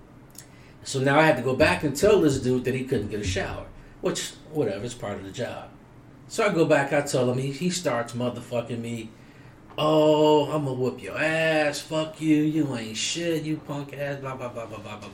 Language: English